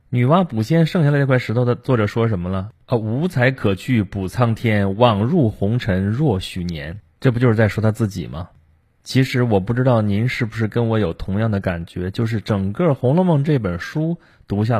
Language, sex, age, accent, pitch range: Chinese, male, 20-39, native, 95-125 Hz